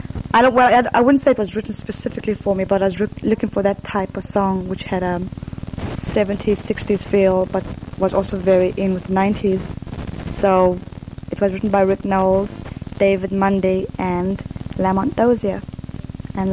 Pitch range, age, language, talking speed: 185-200 Hz, 20-39, English, 180 wpm